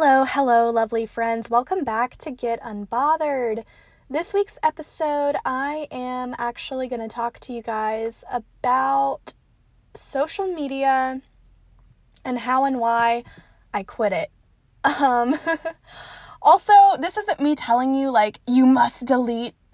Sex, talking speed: female, 130 wpm